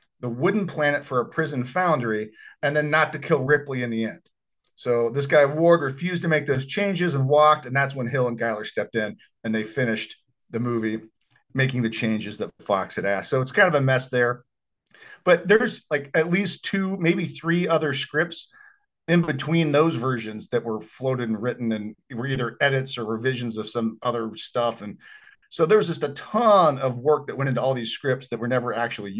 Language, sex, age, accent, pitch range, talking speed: English, male, 40-59, American, 120-155 Hz, 210 wpm